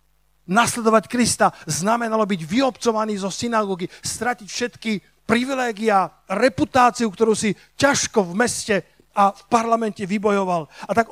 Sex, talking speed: male, 120 wpm